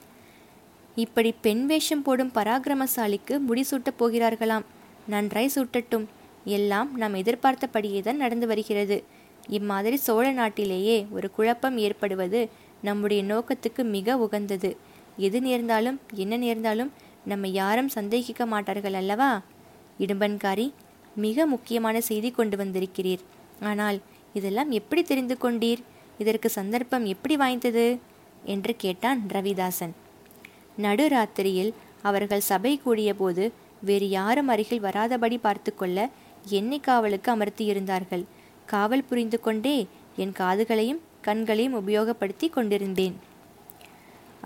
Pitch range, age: 205-245 Hz, 20-39